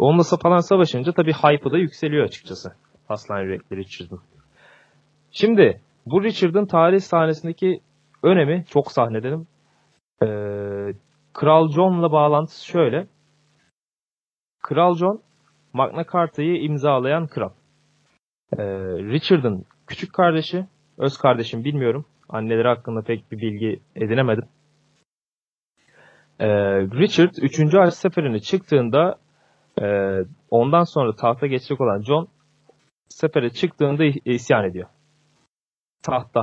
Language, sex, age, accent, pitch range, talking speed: Turkish, male, 30-49, native, 120-165 Hz, 95 wpm